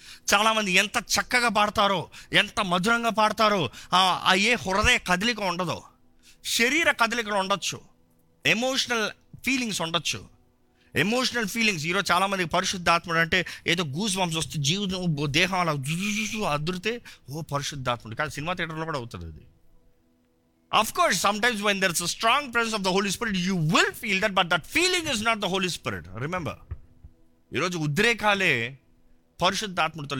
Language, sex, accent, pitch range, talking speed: Telugu, male, native, 145-215 Hz, 125 wpm